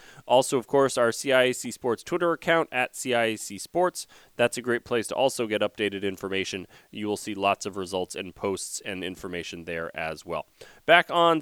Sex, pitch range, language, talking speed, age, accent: male, 105-140 Hz, English, 185 wpm, 30-49, American